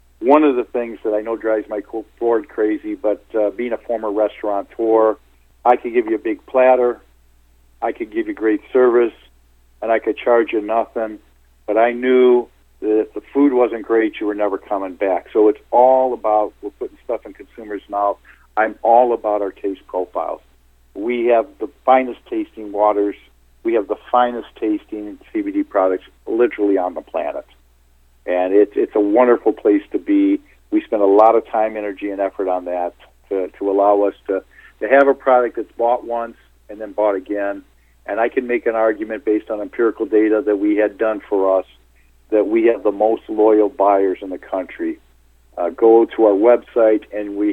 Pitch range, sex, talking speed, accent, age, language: 100-120 Hz, male, 190 wpm, American, 50-69, English